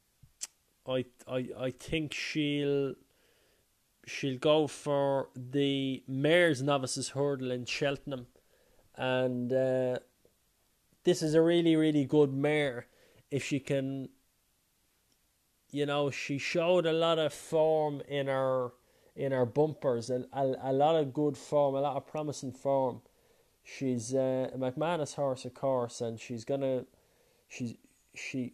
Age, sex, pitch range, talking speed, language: 20-39, male, 125-145 Hz, 135 wpm, English